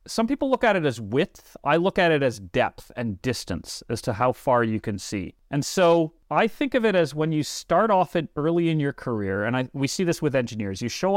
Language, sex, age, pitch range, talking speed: English, male, 40-59, 120-170 Hz, 245 wpm